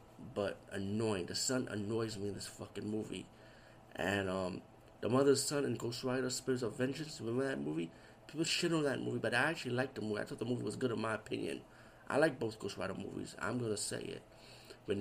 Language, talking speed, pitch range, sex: English, 220 wpm, 110-130 Hz, male